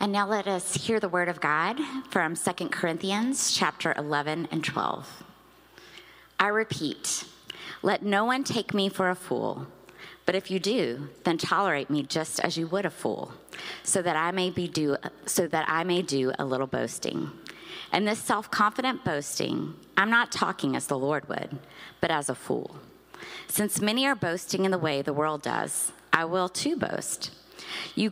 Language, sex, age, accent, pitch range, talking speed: English, female, 30-49, American, 160-210 Hz, 175 wpm